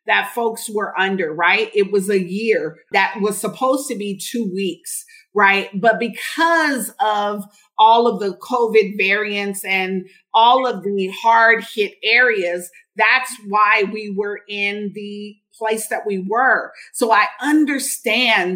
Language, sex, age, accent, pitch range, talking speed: English, female, 40-59, American, 215-275 Hz, 145 wpm